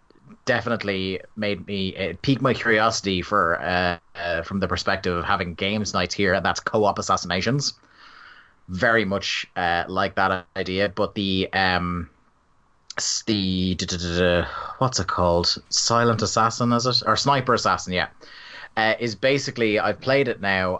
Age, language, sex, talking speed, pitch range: 30-49, English, male, 140 wpm, 95-115 Hz